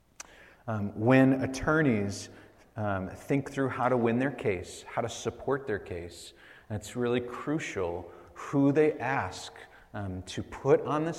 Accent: American